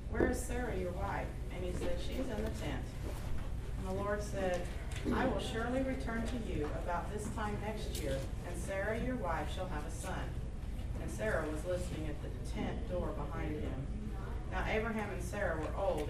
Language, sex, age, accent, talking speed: English, female, 40-59, American, 195 wpm